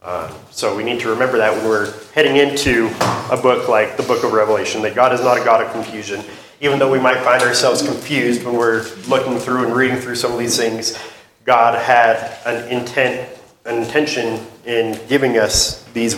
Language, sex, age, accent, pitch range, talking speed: English, male, 30-49, American, 110-130 Hz, 195 wpm